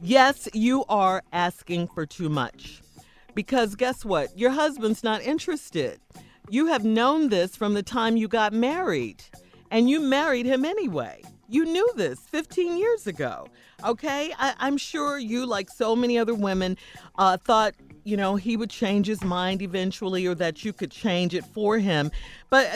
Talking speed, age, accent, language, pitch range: 170 wpm, 40-59, American, English, 195-270 Hz